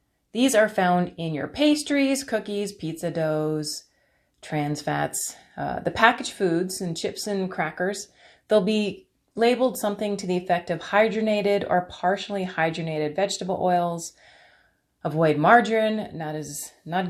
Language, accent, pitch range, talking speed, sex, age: English, American, 175-220 Hz, 135 wpm, female, 30-49